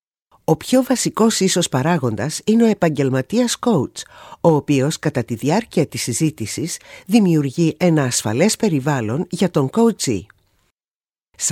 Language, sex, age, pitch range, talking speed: Greek, female, 50-69, 140-215 Hz, 125 wpm